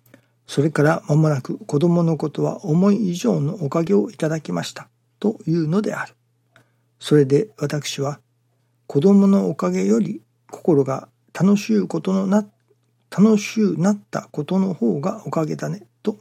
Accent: native